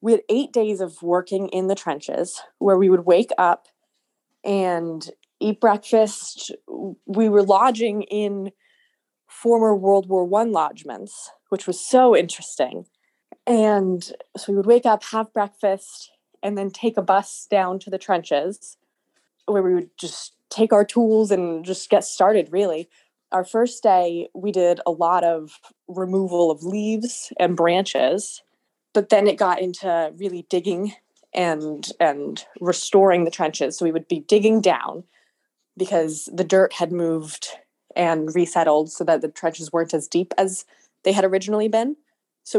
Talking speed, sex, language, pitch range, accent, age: 155 wpm, female, English, 175-215 Hz, American, 20-39